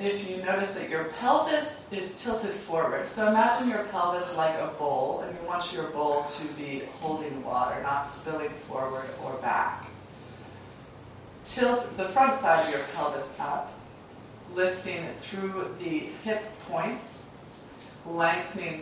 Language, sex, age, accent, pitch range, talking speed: English, female, 30-49, American, 160-200 Hz, 140 wpm